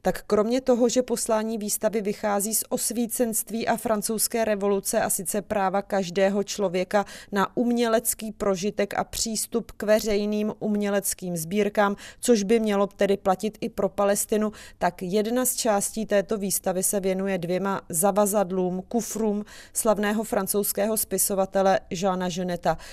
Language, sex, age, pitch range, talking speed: Czech, female, 30-49, 190-215 Hz, 130 wpm